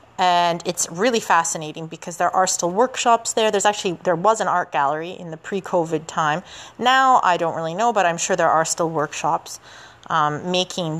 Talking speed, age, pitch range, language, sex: 190 wpm, 30-49, 165-200 Hz, English, female